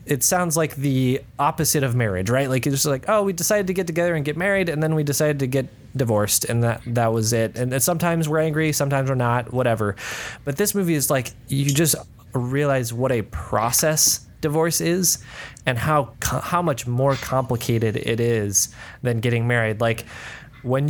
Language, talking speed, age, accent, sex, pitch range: English, 190 wpm, 20-39, American, male, 120-150 Hz